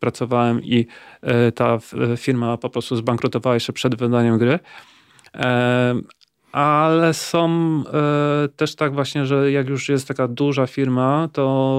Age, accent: 40-59, native